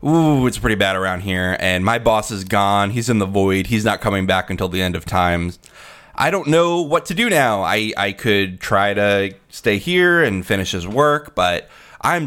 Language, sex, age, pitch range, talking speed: English, male, 20-39, 90-120 Hz, 215 wpm